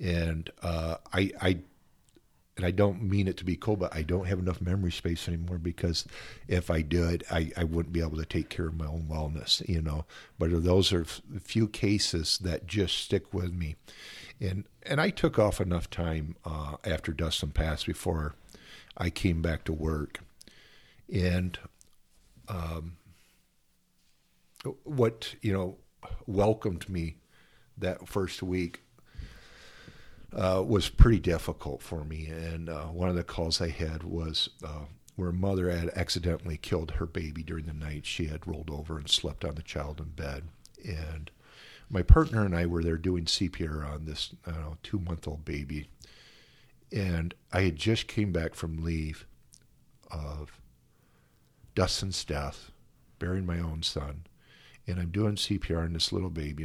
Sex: male